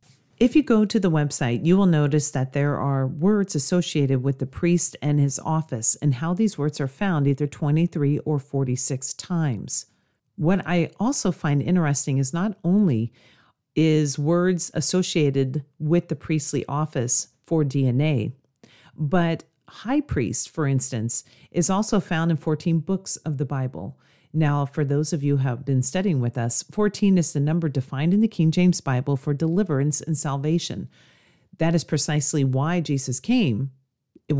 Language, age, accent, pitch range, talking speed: English, 40-59, American, 135-165 Hz, 165 wpm